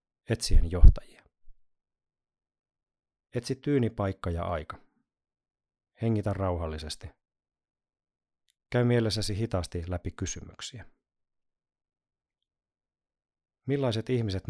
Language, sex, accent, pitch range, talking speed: Finnish, male, native, 85-110 Hz, 60 wpm